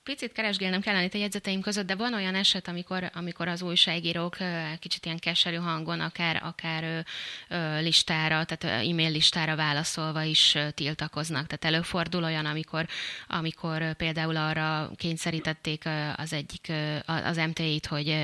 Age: 20-39